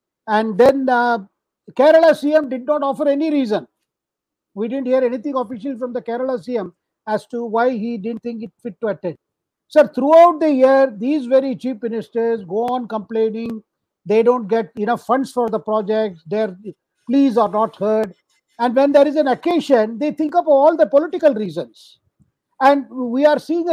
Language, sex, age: English, male, 50-69